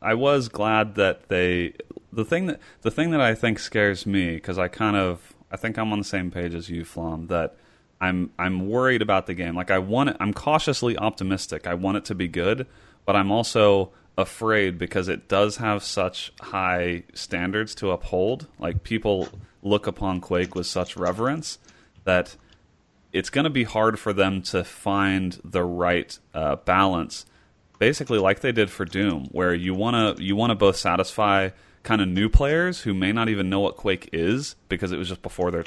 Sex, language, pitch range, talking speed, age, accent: male, English, 90-105 Hz, 195 wpm, 30-49, American